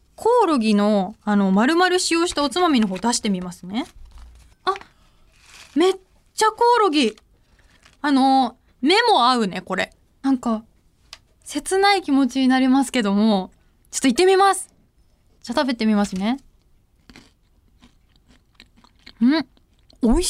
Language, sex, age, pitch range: Japanese, female, 20-39, 220-340 Hz